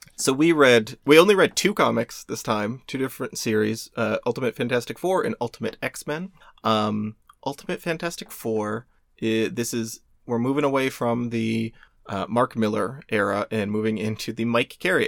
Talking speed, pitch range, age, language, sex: 160 wpm, 110-140 Hz, 30-49, English, male